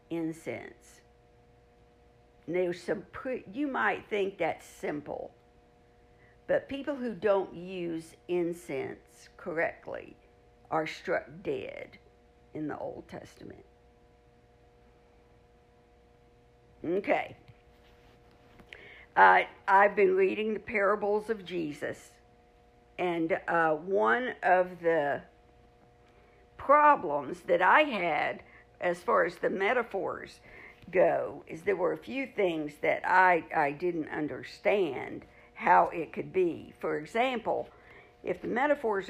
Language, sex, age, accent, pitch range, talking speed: English, female, 60-79, American, 165-225 Hz, 105 wpm